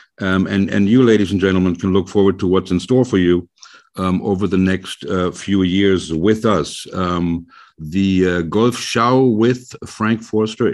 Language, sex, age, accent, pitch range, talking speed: German, male, 60-79, German, 90-115 Hz, 185 wpm